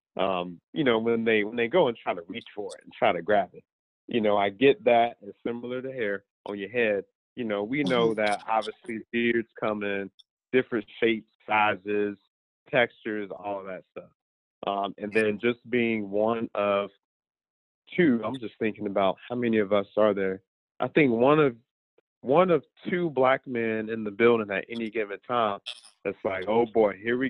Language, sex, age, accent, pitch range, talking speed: English, male, 40-59, American, 100-120 Hz, 190 wpm